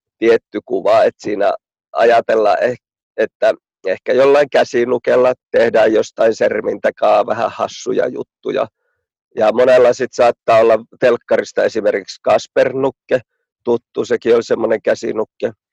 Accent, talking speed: native, 105 wpm